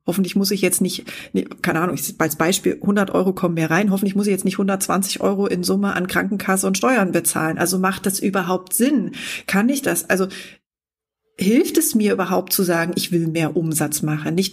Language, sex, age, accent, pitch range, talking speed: German, female, 30-49, German, 165-200 Hz, 205 wpm